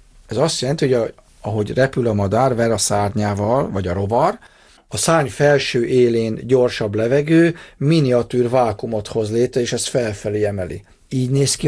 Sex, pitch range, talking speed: male, 110-135 Hz, 160 wpm